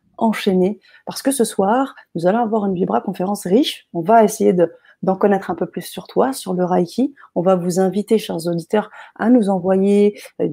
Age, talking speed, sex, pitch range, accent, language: 30-49, 205 wpm, female, 185-225 Hz, French, French